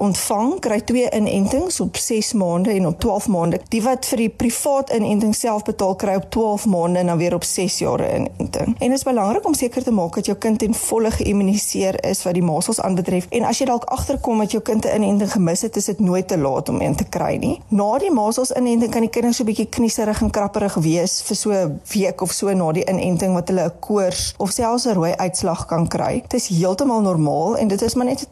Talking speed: 240 wpm